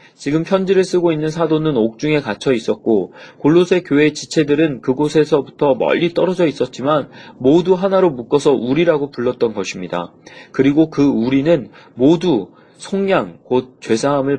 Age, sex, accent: 30-49, male, native